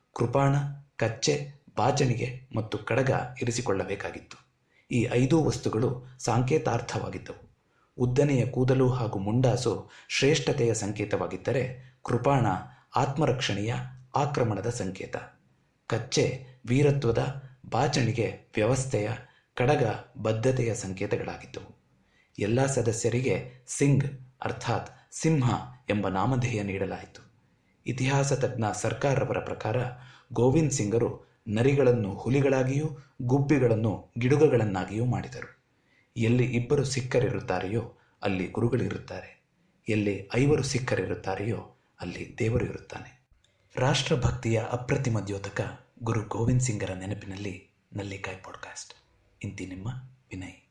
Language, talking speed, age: Kannada, 80 wpm, 30-49